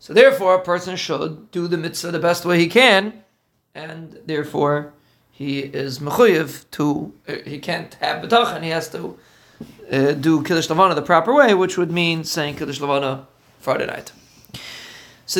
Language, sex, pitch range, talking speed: English, male, 160-210 Hz, 160 wpm